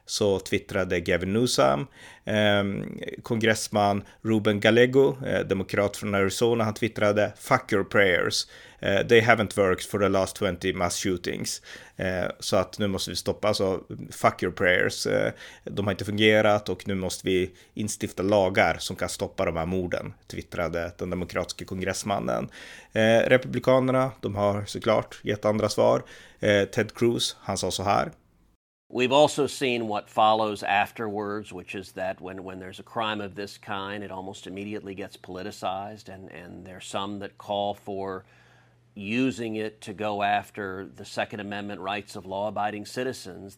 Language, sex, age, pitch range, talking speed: Swedish, male, 30-49, 95-110 Hz, 150 wpm